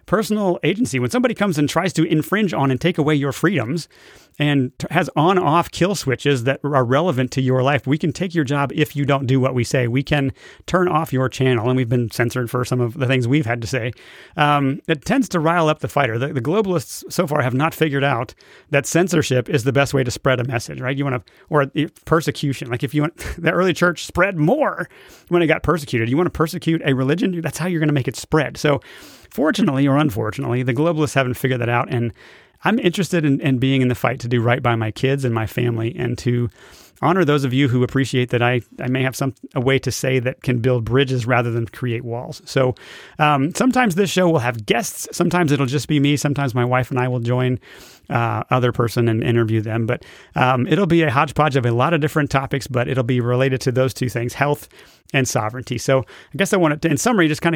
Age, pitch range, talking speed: 30-49, 125-155 Hz, 240 wpm